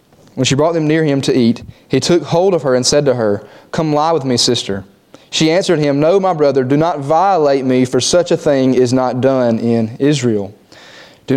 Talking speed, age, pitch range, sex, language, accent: 220 wpm, 20-39, 120-155 Hz, male, English, American